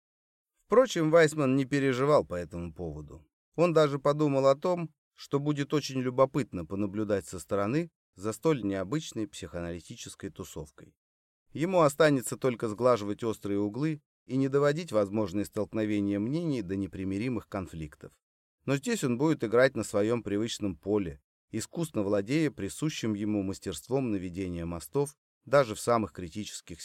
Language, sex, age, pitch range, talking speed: Russian, male, 30-49, 100-145 Hz, 130 wpm